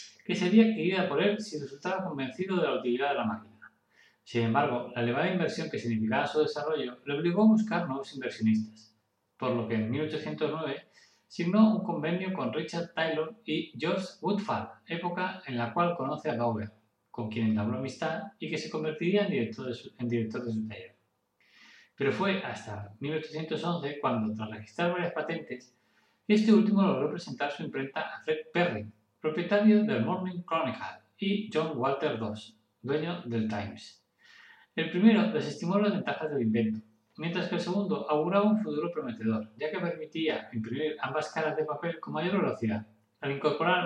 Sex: male